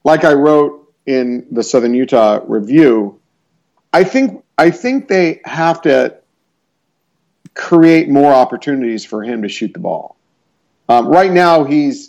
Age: 50-69